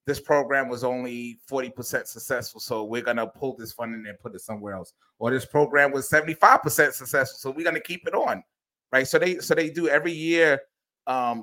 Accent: American